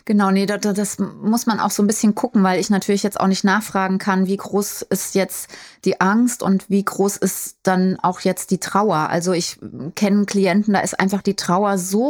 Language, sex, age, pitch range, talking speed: German, female, 20-39, 175-195 Hz, 220 wpm